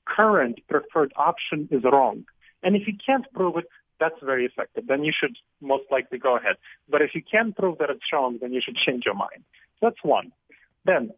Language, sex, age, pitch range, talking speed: English, male, 40-59, 135-185 Hz, 205 wpm